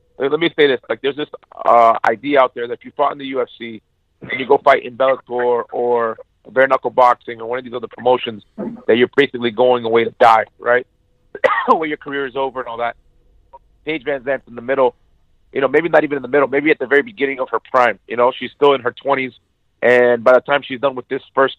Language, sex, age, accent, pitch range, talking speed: English, male, 40-59, American, 125-145 Hz, 240 wpm